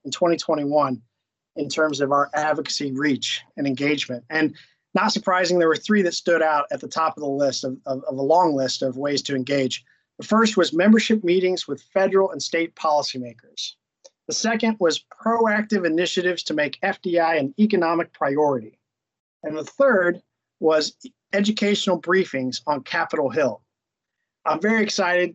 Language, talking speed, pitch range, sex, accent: English, 160 wpm, 150-185 Hz, male, American